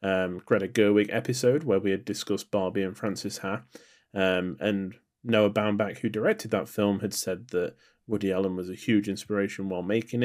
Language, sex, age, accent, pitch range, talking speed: English, male, 30-49, British, 100-115 Hz, 180 wpm